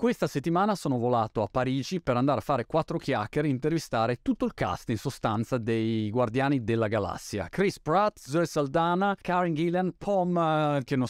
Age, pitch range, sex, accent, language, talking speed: 30-49, 110-155 Hz, male, native, Italian, 180 wpm